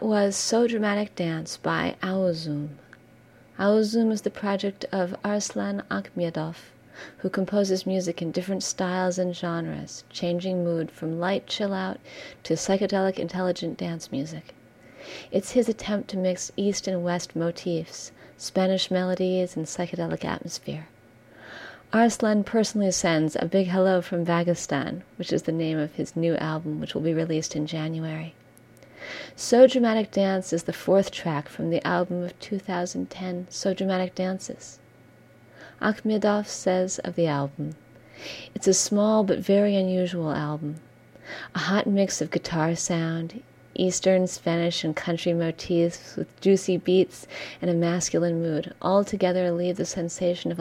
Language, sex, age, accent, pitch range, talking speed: English, female, 40-59, American, 165-195 Hz, 140 wpm